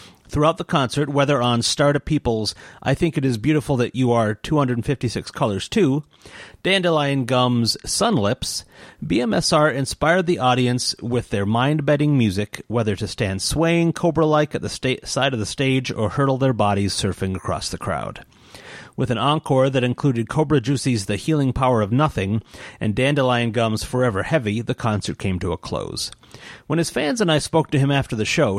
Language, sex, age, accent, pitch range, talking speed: English, male, 40-59, American, 105-145 Hz, 175 wpm